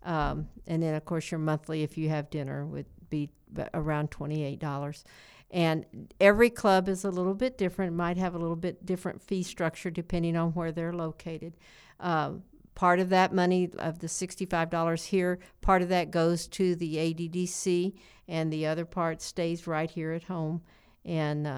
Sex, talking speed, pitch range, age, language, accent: female, 170 wpm, 160-180 Hz, 60-79, English, American